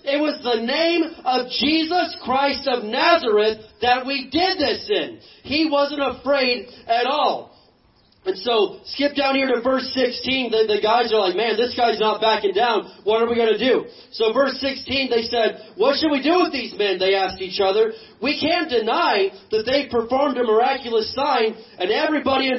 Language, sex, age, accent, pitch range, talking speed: English, male, 30-49, American, 235-285 Hz, 190 wpm